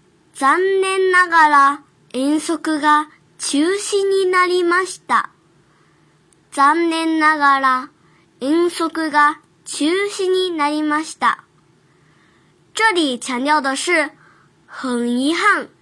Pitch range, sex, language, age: 255-355 Hz, male, Chinese, 10-29